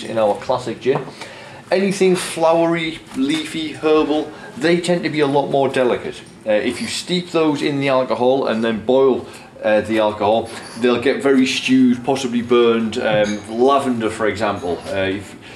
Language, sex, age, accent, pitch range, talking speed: English, male, 30-49, British, 105-150 Hz, 155 wpm